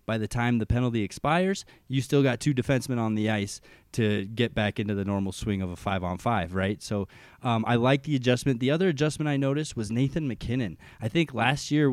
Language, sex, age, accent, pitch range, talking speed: English, male, 20-39, American, 100-125 Hz, 215 wpm